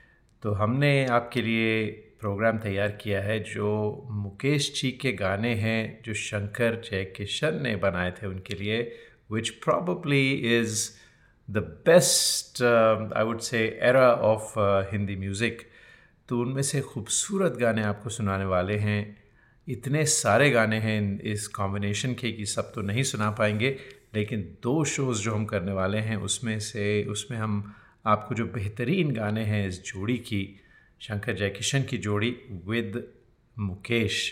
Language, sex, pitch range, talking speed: Hindi, male, 105-125 Hz, 145 wpm